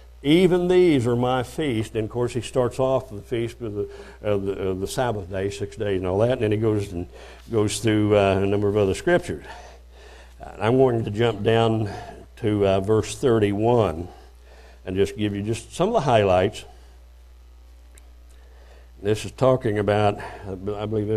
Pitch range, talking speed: 90-120 Hz, 180 wpm